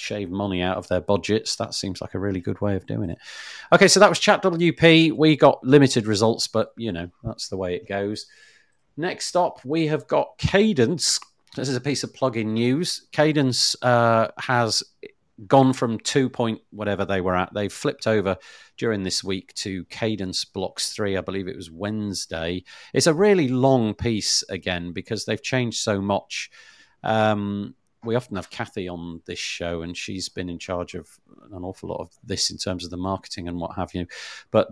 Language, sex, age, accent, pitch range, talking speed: English, male, 40-59, British, 95-125 Hz, 195 wpm